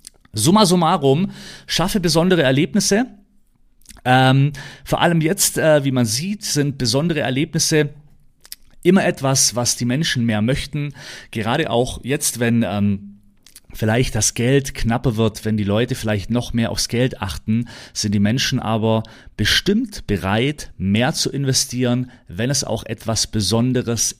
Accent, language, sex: German, German, male